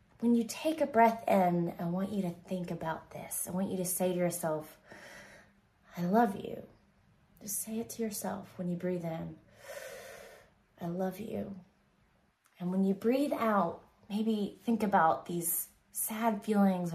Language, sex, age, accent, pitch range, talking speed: English, female, 20-39, American, 165-200 Hz, 165 wpm